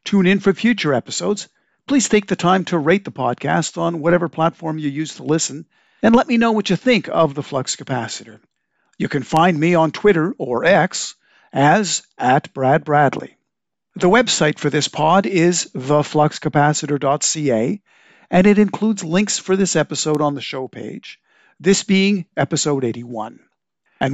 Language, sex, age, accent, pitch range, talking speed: English, male, 50-69, American, 145-200 Hz, 165 wpm